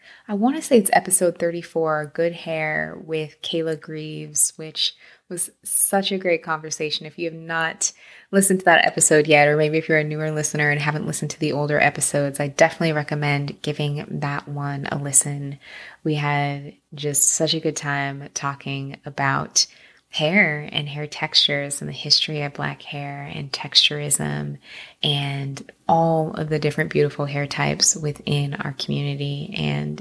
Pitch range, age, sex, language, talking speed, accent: 145-170 Hz, 20-39, female, English, 165 wpm, American